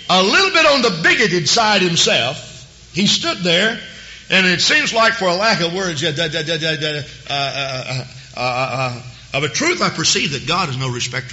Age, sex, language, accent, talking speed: 50-69, male, English, American, 195 wpm